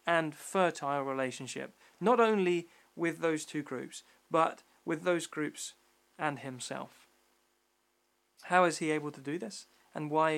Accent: British